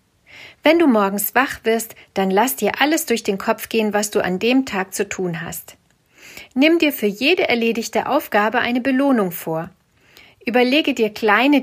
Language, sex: German, female